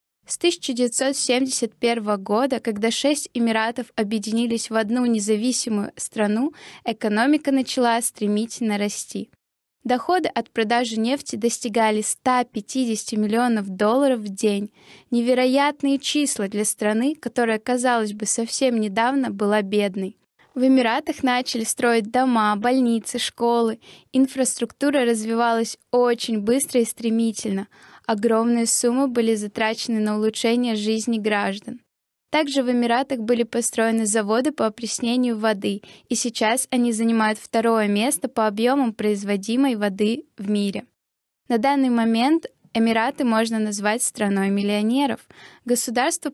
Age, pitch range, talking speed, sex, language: 10-29, 220-250 Hz, 115 wpm, female, Russian